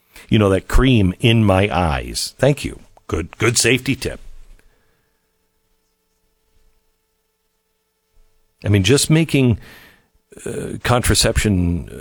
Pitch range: 85-100 Hz